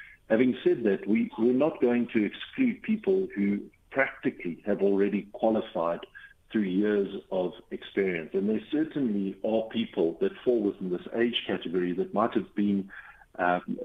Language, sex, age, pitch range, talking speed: English, male, 50-69, 95-115 Hz, 145 wpm